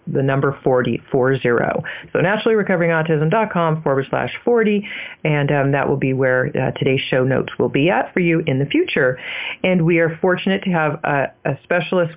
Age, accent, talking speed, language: 40-59, American, 185 wpm, English